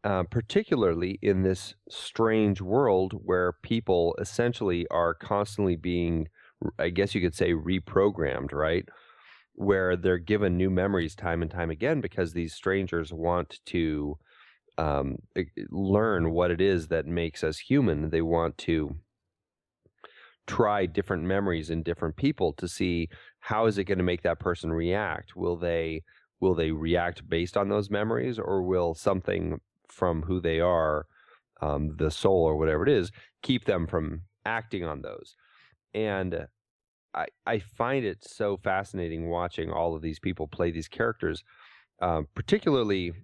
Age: 30-49